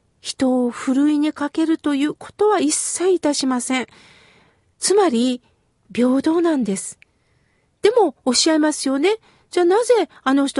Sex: female